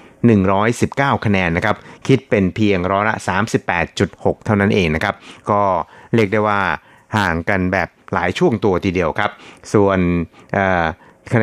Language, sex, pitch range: Thai, male, 90-110 Hz